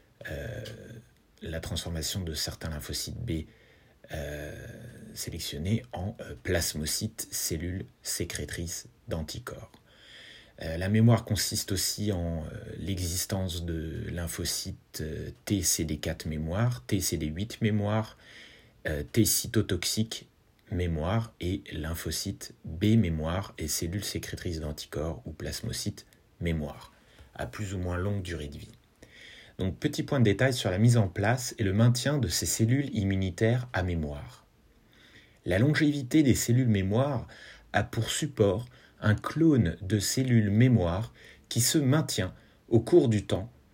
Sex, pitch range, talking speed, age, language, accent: male, 90-115 Hz, 125 wpm, 30-49, French, French